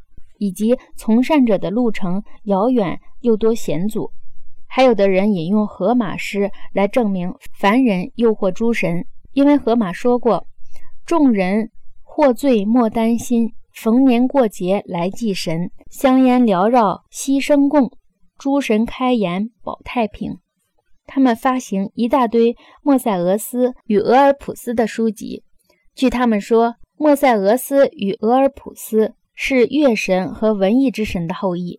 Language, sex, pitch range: Chinese, female, 200-250 Hz